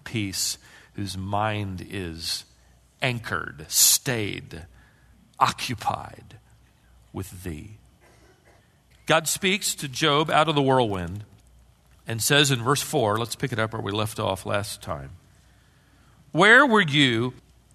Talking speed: 120 wpm